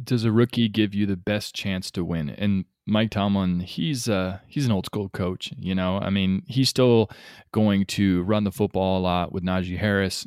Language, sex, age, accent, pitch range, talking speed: English, male, 20-39, American, 95-110 Hz, 210 wpm